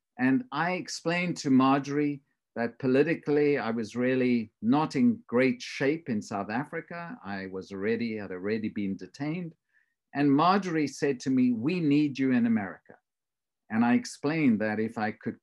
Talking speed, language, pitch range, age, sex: 160 wpm, English, 125-165 Hz, 50-69, male